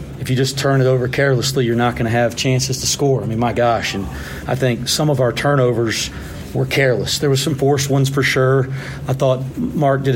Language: English